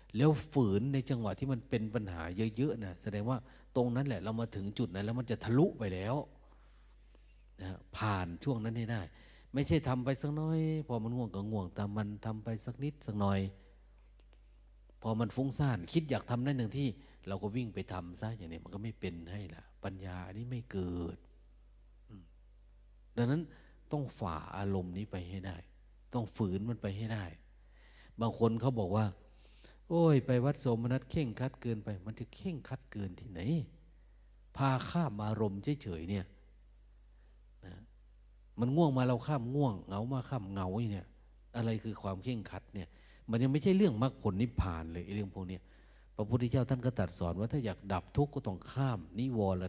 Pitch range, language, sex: 95-125 Hz, Thai, male